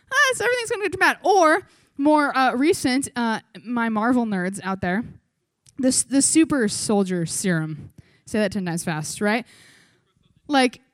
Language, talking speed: English, 165 wpm